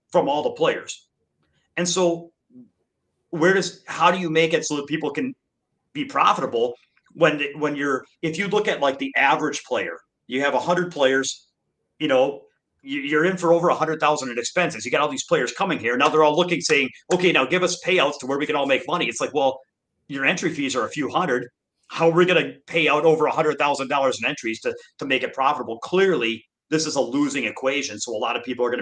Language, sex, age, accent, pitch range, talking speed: English, male, 40-59, American, 130-180 Hz, 235 wpm